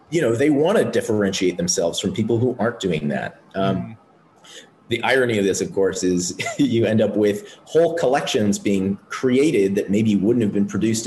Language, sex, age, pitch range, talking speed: English, male, 30-49, 95-140 Hz, 190 wpm